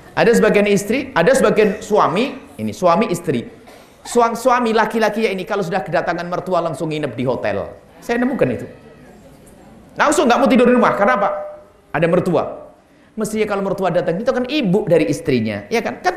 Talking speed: 175 wpm